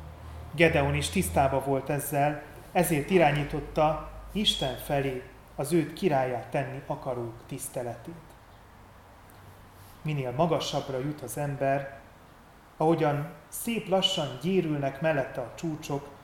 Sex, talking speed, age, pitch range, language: male, 100 wpm, 30-49, 120-150 Hz, Hungarian